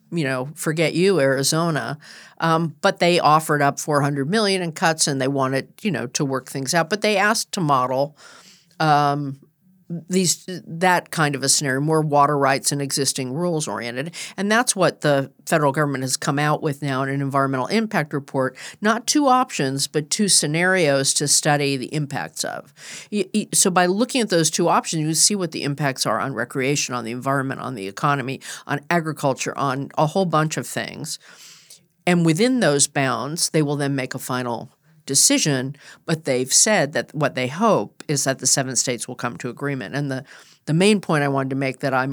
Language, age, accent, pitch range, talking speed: English, 50-69, American, 135-170 Hz, 200 wpm